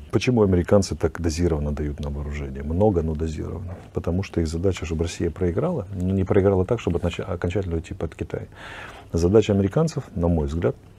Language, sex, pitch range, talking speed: English, male, 80-100 Hz, 175 wpm